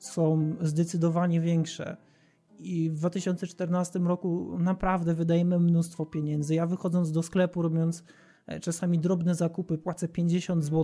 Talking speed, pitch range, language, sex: 120 wpm, 160-185 Hz, Polish, male